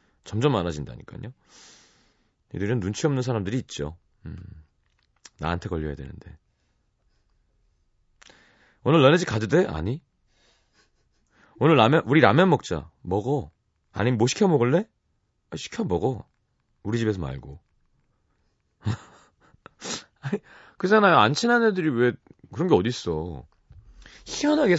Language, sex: Korean, male